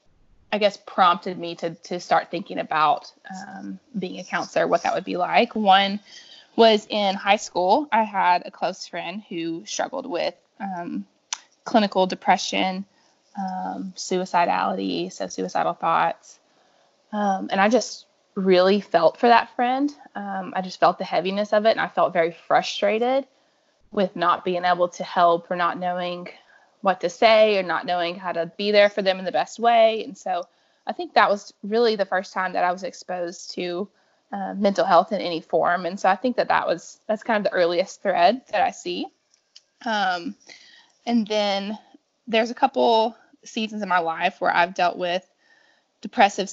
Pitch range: 180-225 Hz